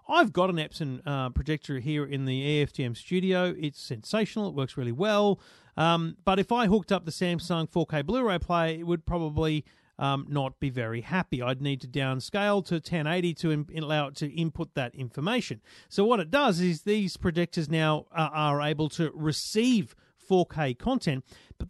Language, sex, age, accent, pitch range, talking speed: English, male, 40-59, Australian, 150-200 Hz, 185 wpm